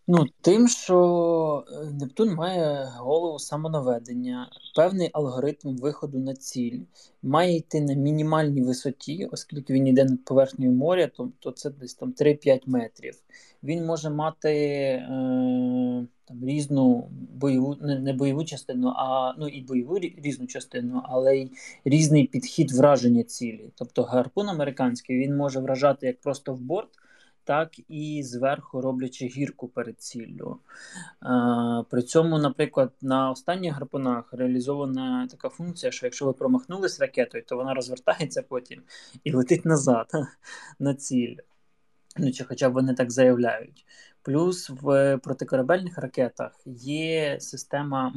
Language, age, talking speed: Ukrainian, 20-39, 130 wpm